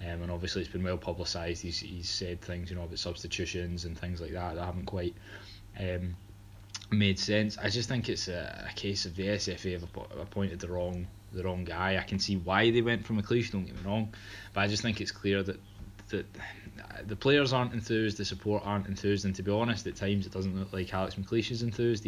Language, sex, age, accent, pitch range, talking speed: English, male, 20-39, British, 90-105 Hz, 230 wpm